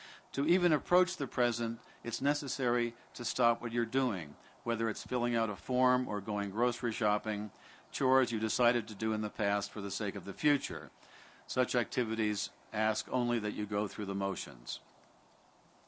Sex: male